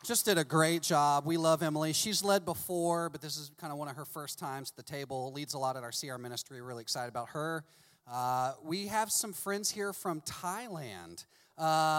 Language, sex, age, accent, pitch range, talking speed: English, male, 30-49, American, 140-195 Hz, 220 wpm